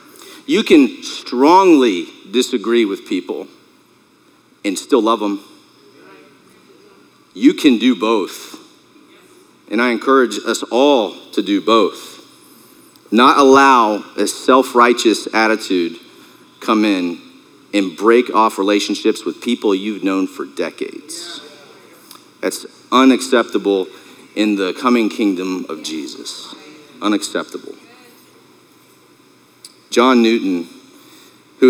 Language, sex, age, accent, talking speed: English, male, 40-59, American, 95 wpm